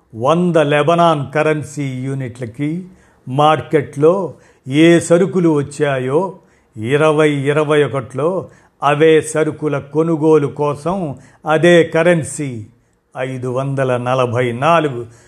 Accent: native